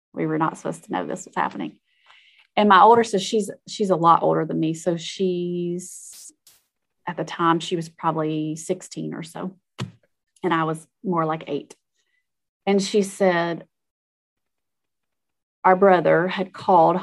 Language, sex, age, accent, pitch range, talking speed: English, female, 30-49, American, 170-205 Hz, 155 wpm